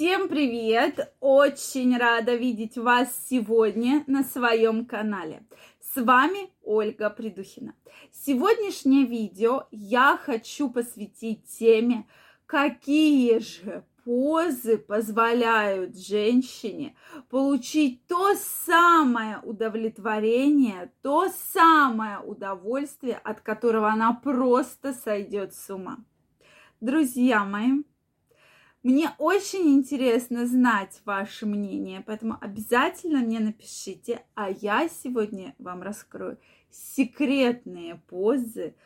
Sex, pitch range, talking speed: female, 215-275 Hz, 90 wpm